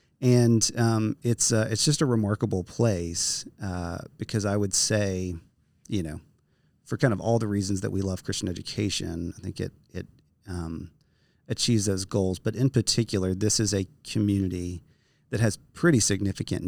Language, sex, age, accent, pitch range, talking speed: English, male, 30-49, American, 95-115 Hz, 165 wpm